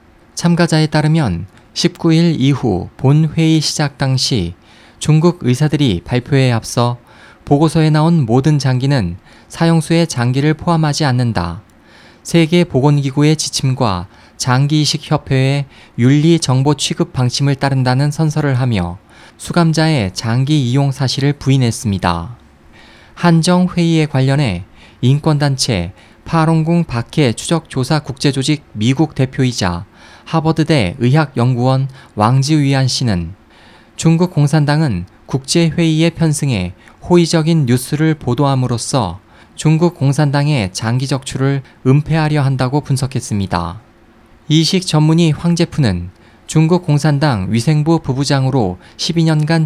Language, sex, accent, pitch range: Korean, male, native, 120-160 Hz